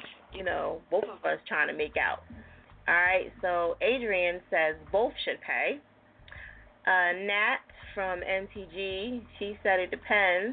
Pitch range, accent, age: 180-225 Hz, American, 30-49